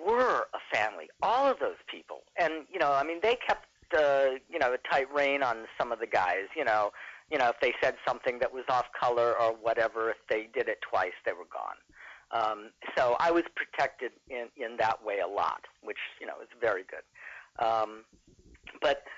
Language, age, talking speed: English, 50-69, 205 wpm